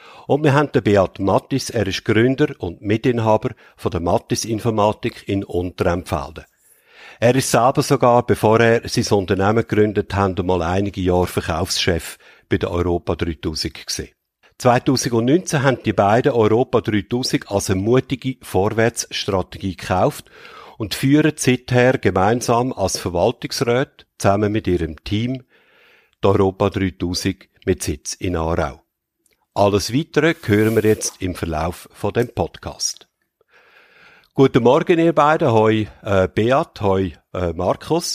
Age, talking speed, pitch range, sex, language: 50-69, 130 wpm, 95-125 Hz, male, German